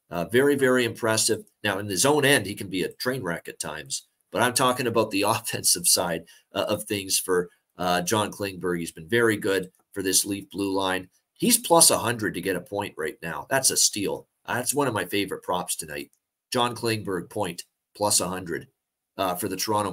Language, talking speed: English, 200 wpm